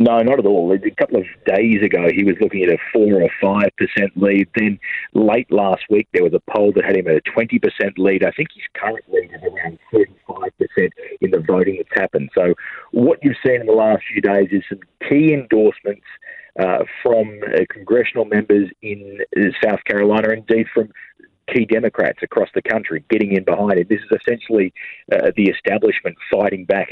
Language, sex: English, male